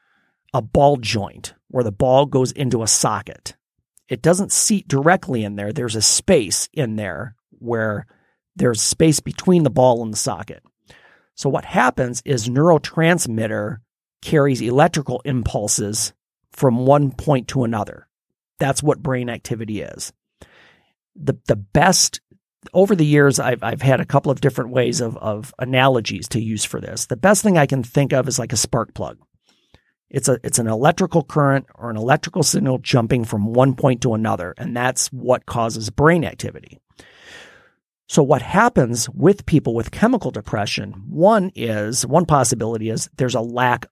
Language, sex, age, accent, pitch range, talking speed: English, male, 40-59, American, 115-140 Hz, 165 wpm